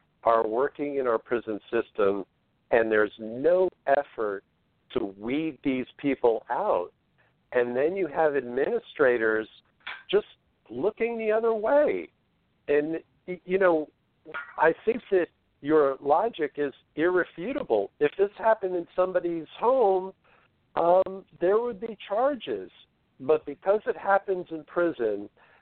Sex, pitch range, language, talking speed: male, 125-180 Hz, English, 120 wpm